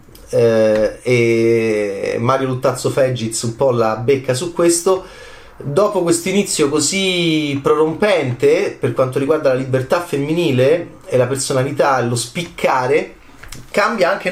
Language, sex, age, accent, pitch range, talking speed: Italian, male, 30-49, native, 125-175 Hz, 120 wpm